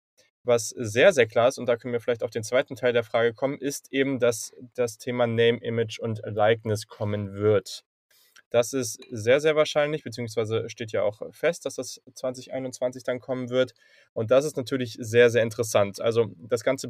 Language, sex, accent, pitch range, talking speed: German, male, German, 115-135 Hz, 190 wpm